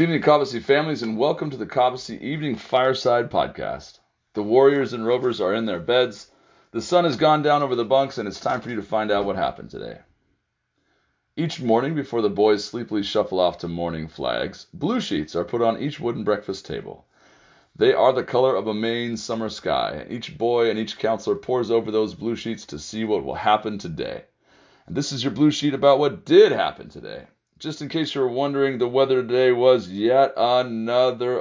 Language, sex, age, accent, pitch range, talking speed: English, male, 30-49, American, 105-135 Hz, 205 wpm